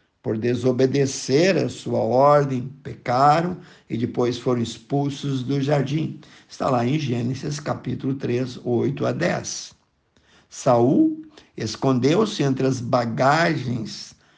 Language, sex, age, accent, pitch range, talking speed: Portuguese, male, 50-69, Brazilian, 120-145 Hz, 110 wpm